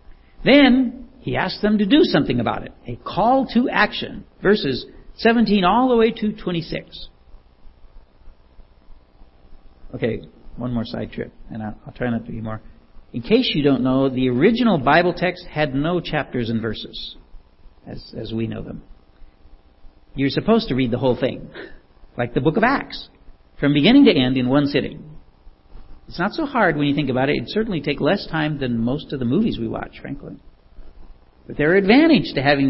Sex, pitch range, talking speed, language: male, 115-180 Hz, 180 wpm, English